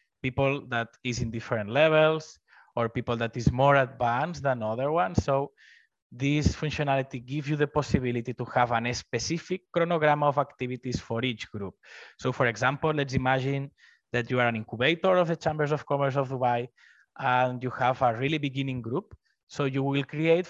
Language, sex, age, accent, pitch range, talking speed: English, male, 20-39, Spanish, 120-145 Hz, 175 wpm